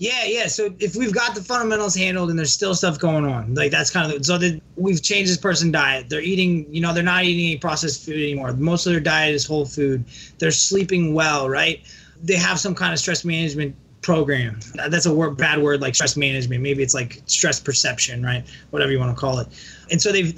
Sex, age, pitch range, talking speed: male, 20-39, 140-180 Hz, 235 wpm